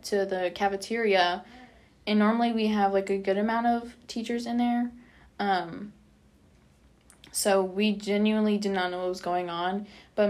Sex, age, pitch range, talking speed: female, 10-29, 185-220 Hz, 155 wpm